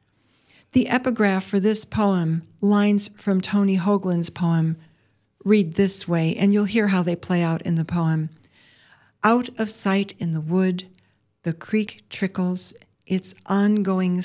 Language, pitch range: English, 160-205 Hz